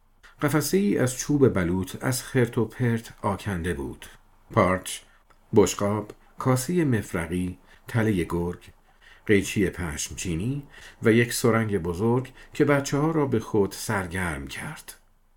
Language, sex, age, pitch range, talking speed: Persian, male, 50-69, 95-130 Hz, 120 wpm